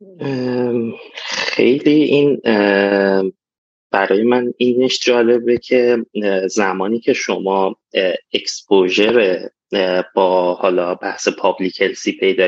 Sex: male